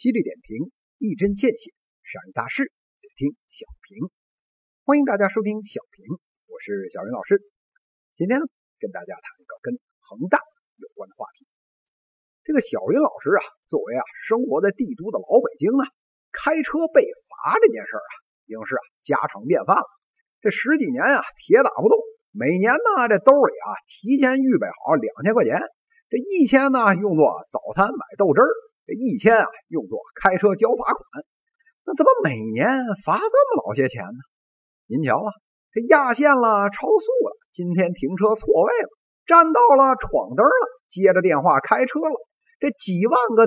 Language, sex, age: Chinese, male, 50-69